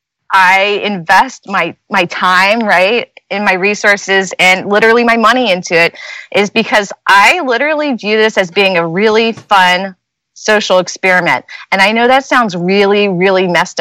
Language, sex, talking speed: English, female, 155 wpm